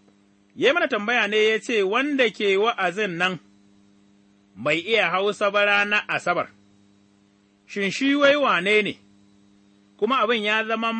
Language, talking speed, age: English, 125 wpm, 30-49